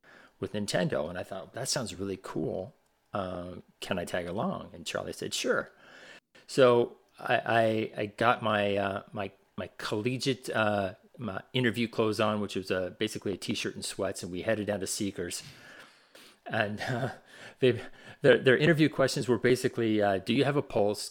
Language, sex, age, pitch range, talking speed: English, male, 40-59, 95-115 Hz, 180 wpm